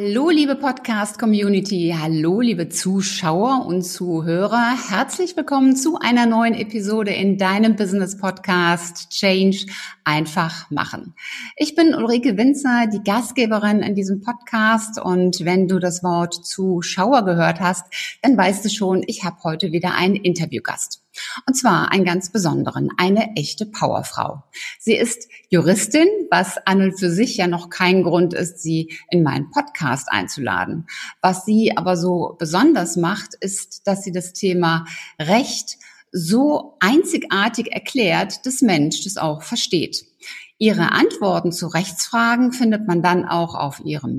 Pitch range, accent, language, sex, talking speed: 175-235 Hz, German, German, female, 140 wpm